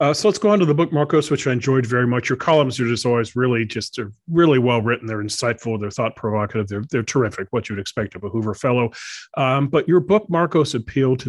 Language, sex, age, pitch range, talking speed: English, male, 40-59, 105-130 Hz, 245 wpm